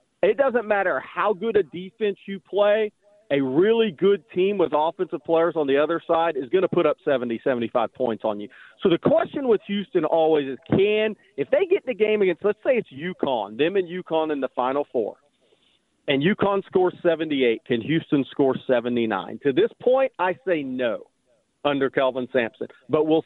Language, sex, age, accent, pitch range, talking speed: English, male, 40-59, American, 130-185 Hz, 190 wpm